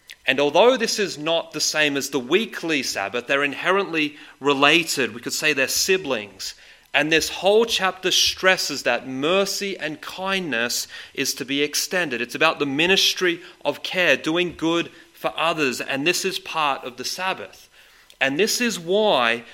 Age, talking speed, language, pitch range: 30-49, 165 wpm, English, 130-175 Hz